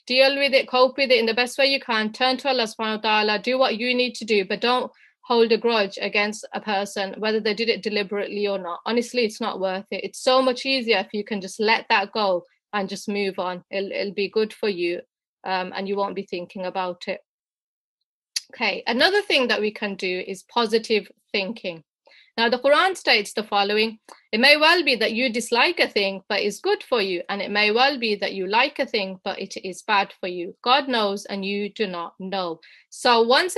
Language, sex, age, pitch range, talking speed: English, female, 30-49, 200-250 Hz, 230 wpm